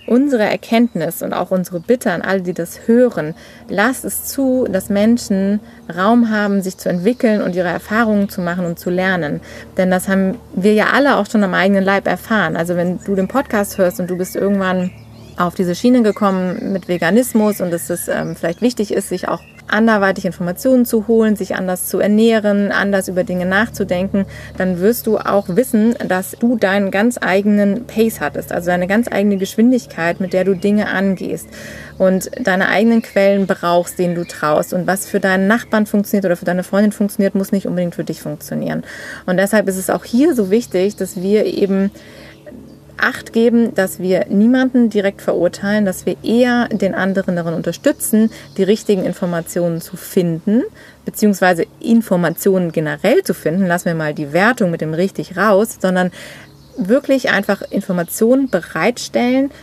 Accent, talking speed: German, 175 wpm